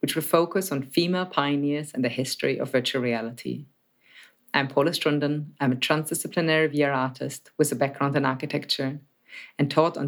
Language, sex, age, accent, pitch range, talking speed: English, female, 30-49, German, 135-170 Hz, 165 wpm